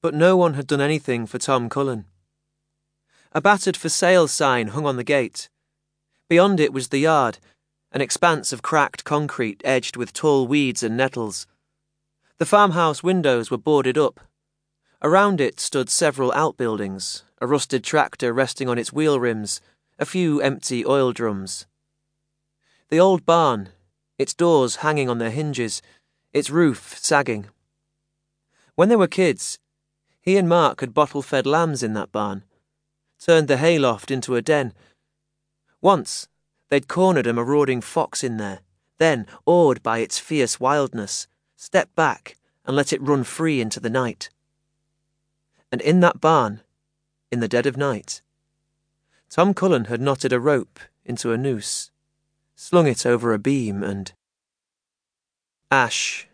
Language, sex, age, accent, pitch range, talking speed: English, male, 30-49, British, 120-150 Hz, 145 wpm